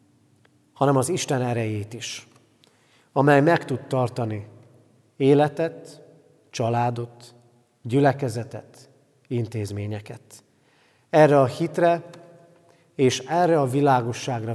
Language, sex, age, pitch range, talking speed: Hungarian, male, 40-59, 120-165 Hz, 80 wpm